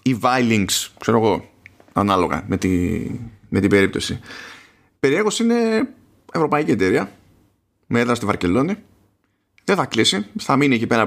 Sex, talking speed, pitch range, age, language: male, 130 wpm, 100-140 Hz, 30-49, Greek